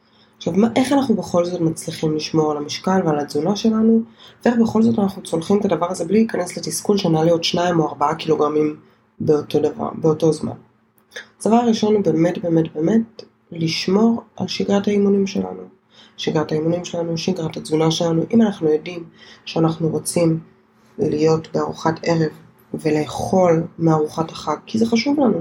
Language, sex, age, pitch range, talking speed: Hebrew, female, 20-39, 160-205 Hz, 155 wpm